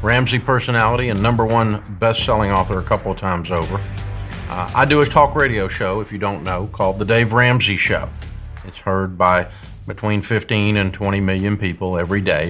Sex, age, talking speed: male, 50-69, 185 wpm